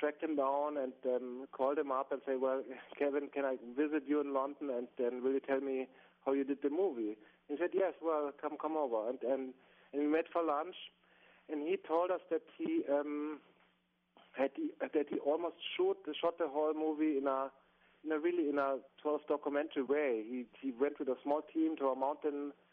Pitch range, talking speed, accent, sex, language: 130-150 Hz, 210 wpm, German, male, English